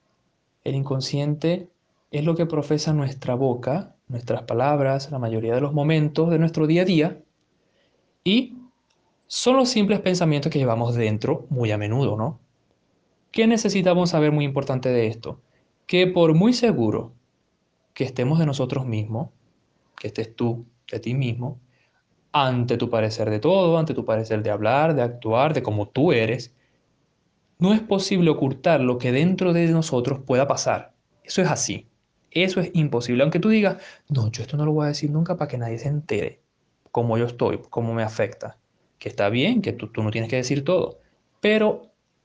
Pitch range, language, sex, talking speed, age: 120-170 Hz, Spanish, male, 175 wpm, 20-39